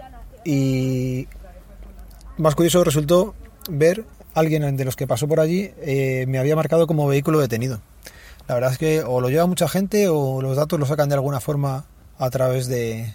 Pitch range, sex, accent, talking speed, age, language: 125-150 Hz, male, Spanish, 180 wpm, 30-49, Spanish